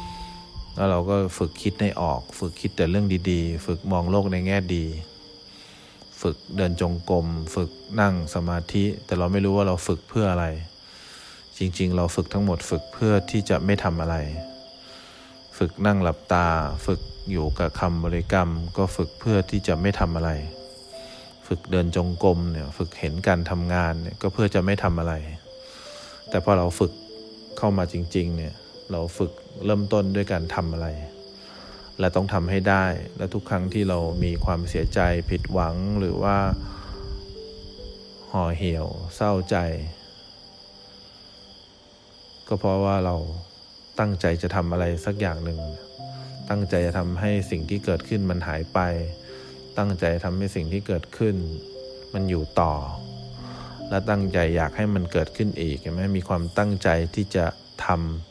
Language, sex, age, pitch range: English, male, 20-39, 85-100 Hz